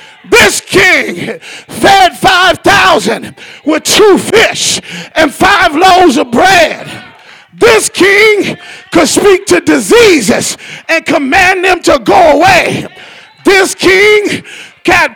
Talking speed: 105 wpm